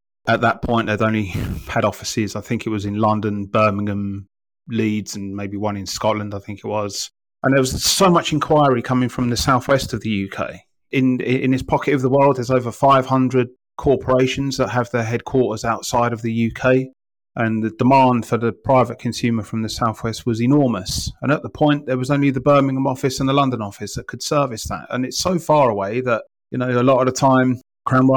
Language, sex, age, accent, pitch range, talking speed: English, male, 30-49, British, 110-130 Hz, 215 wpm